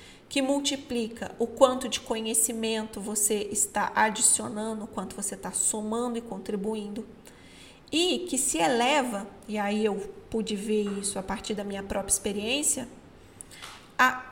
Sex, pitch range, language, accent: female, 215-270 Hz, Portuguese, Brazilian